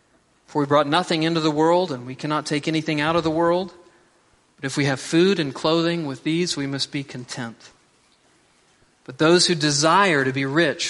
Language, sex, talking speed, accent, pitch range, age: English, male, 200 wpm, American, 135-170 Hz, 40-59